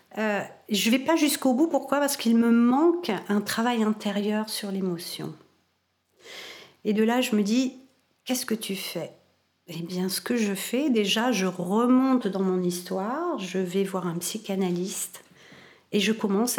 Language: French